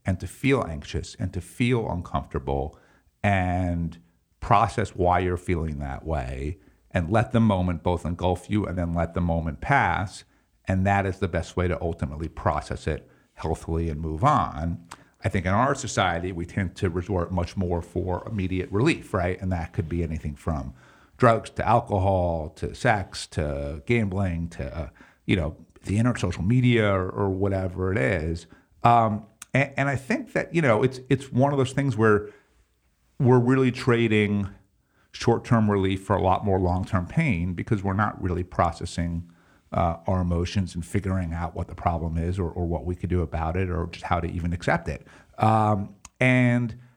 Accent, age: American, 50-69